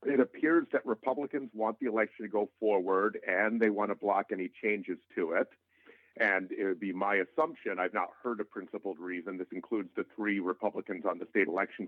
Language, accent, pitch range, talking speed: English, American, 100-110 Hz, 200 wpm